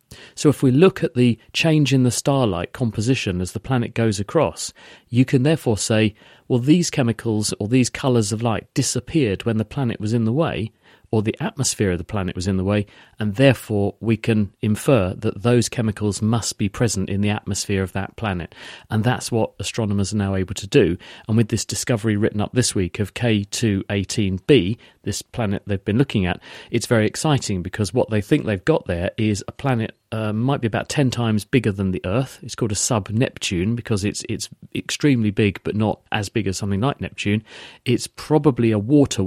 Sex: male